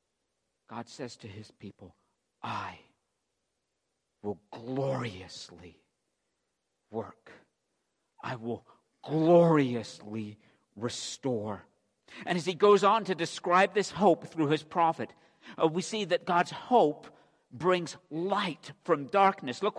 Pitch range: 135-185 Hz